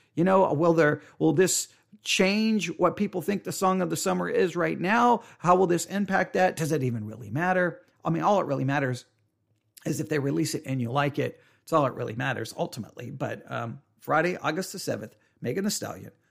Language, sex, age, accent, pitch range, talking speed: English, male, 40-59, American, 130-185 Hz, 215 wpm